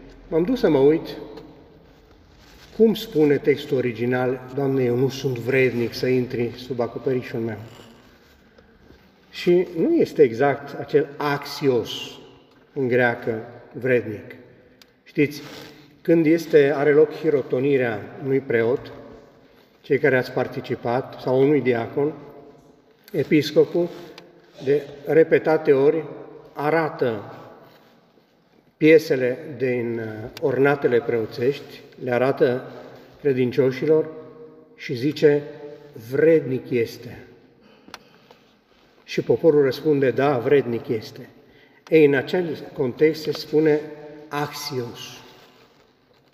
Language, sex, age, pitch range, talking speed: Romanian, male, 40-59, 130-155 Hz, 90 wpm